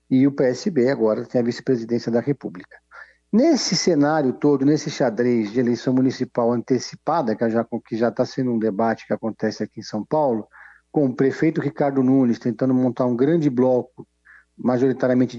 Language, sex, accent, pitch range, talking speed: Portuguese, male, Brazilian, 120-150 Hz, 170 wpm